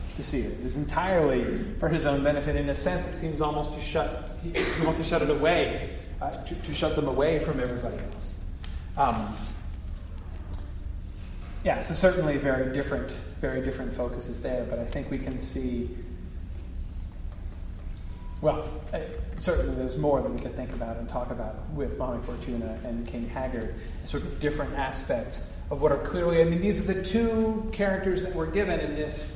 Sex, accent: male, American